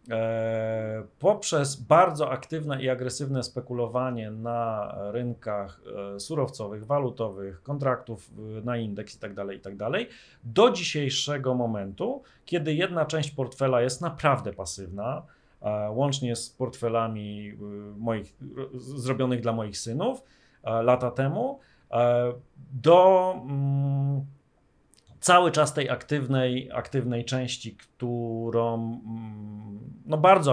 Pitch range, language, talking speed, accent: 115-140 Hz, Polish, 90 wpm, native